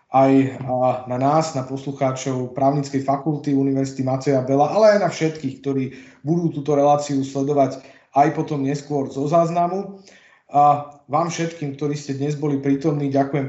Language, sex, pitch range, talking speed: Slovak, male, 130-150 Hz, 145 wpm